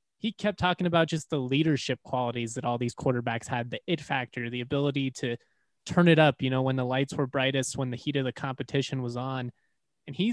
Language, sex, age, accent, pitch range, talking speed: English, male, 20-39, American, 130-155 Hz, 225 wpm